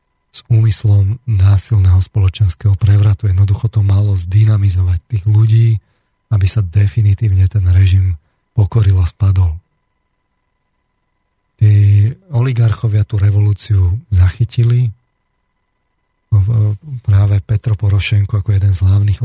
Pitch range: 95-110 Hz